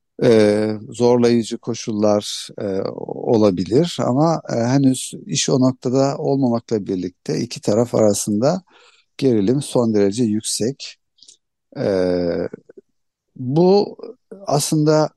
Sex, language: male, Turkish